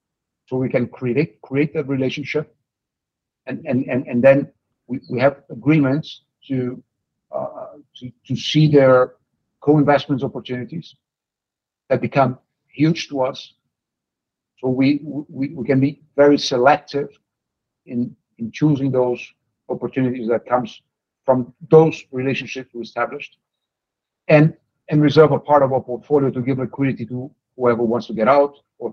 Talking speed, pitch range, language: 140 wpm, 125-145 Hz, English